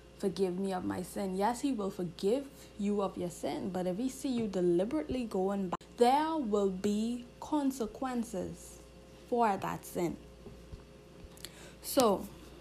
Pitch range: 185-235 Hz